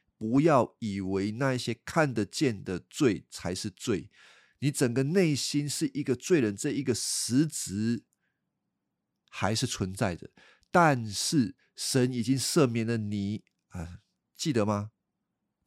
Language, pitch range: Chinese, 105-140 Hz